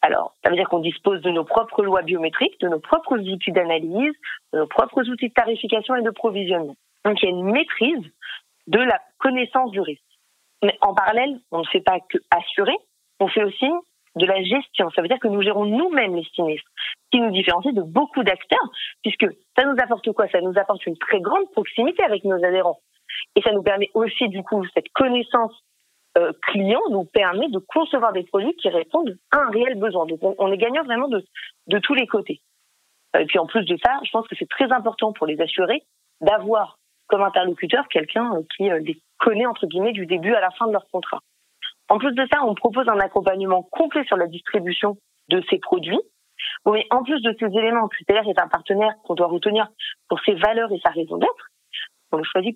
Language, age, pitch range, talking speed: French, 30-49, 185-255 Hz, 210 wpm